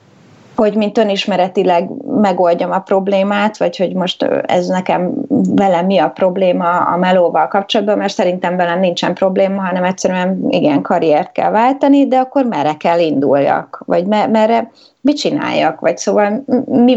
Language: Hungarian